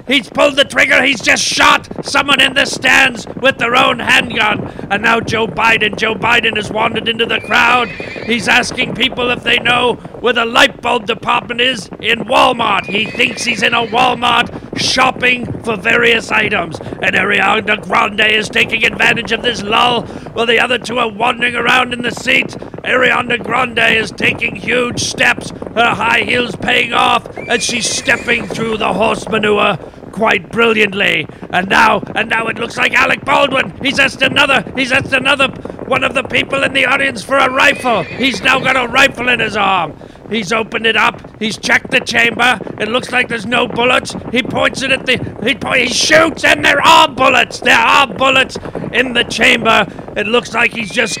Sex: male